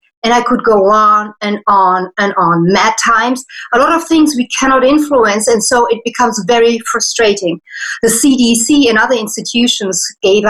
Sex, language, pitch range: female, English, 205-260 Hz